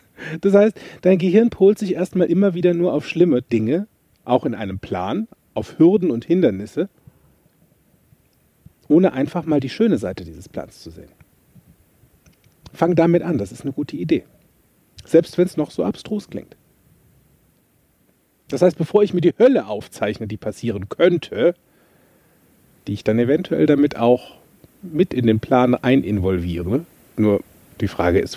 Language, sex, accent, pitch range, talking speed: German, male, German, 120-175 Hz, 150 wpm